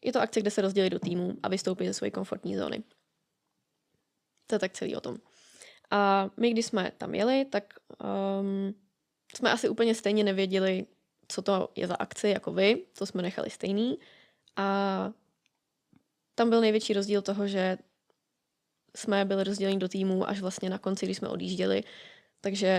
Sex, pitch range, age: female, 190-205 Hz, 20-39